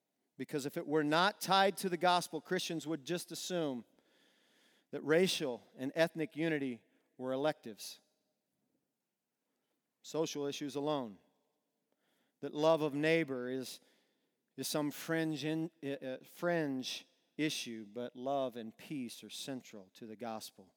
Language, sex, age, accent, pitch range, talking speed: English, male, 40-59, American, 140-230 Hz, 125 wpm